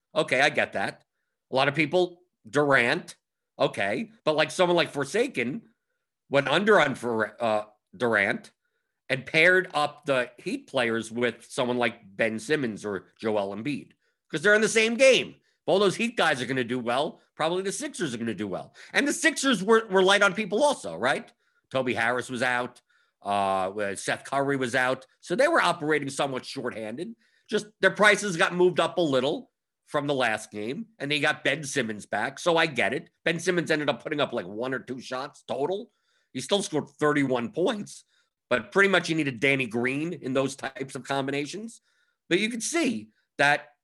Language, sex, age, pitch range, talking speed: English, male, 50-69, 125-180 Hz, 190 wpm